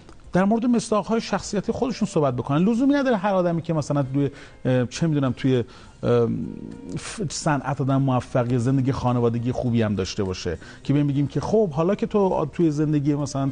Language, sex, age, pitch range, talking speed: Persian, male, 40-59, 135-190 Hz, 180 wpm